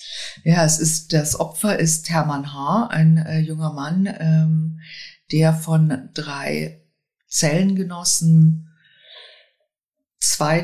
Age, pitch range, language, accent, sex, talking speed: 50-69, 150-180 Hz, German, German, female, 100 wpm